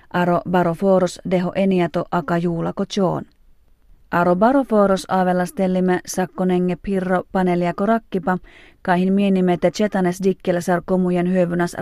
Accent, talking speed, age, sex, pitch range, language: native, 115 wpm, 30-49, female, 180-195 Hz, Finnish